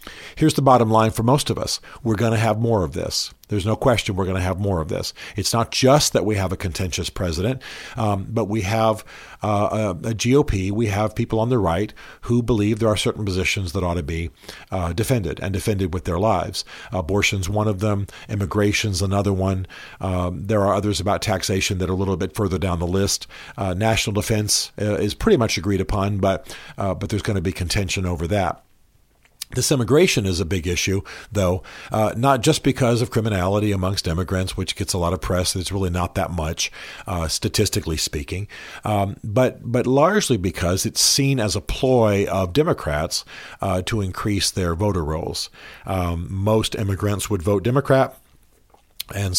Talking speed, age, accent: 190 wpm, 50-69, American